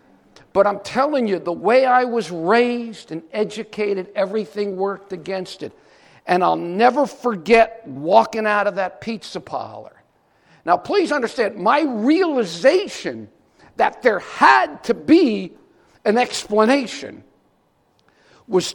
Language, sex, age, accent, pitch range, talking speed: English, male, 50-69, American, 200-280 Hz, 120 wpm